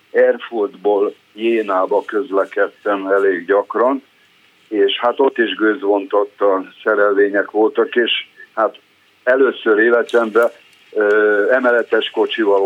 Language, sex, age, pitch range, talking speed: Hungarian, male, 60-79, 295-445 Hz, 90 wpm